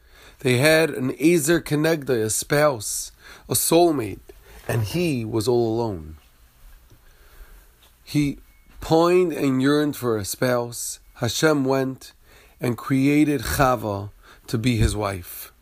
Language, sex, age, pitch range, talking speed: English, male, 40-59, 95-150 Hz, 115 wpm